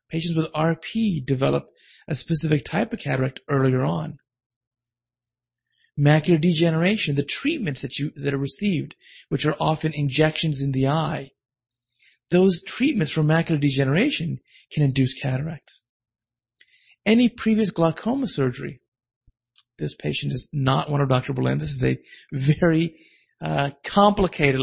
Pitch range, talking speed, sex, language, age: 130-185 Hz, 130 wpm, male, English, 30-49